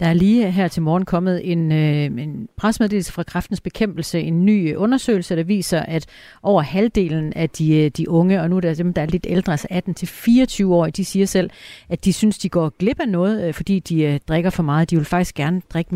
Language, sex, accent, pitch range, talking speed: Danish, female, native, 165-205 Hz, 220 wpm